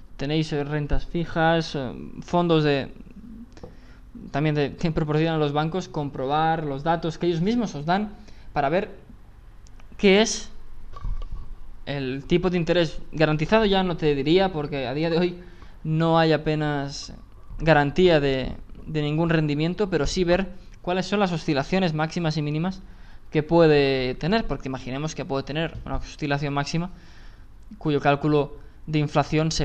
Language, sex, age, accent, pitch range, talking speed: Spanish, male, 20-39, Spanish, 130-170 Hz, 145 wpm